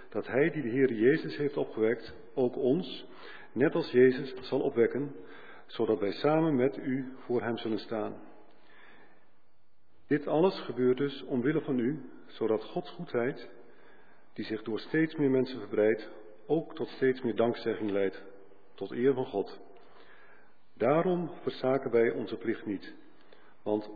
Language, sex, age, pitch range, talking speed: Dutch, male, 50-69, 110-140 Hz, 145 wpm